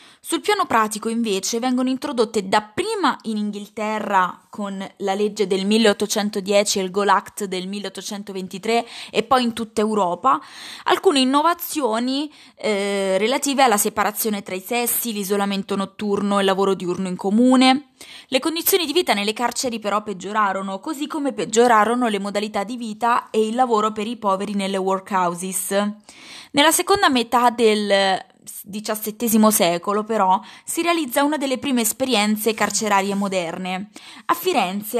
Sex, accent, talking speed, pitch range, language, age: female, native, 140 wpm, 200-260 Hz, Italian, 20-39